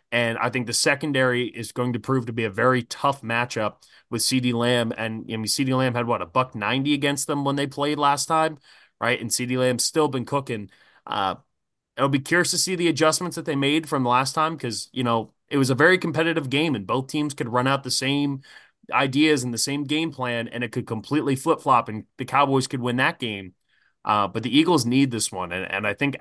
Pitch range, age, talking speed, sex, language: 115-145 Hz, 20-39, 235 wpm, male, English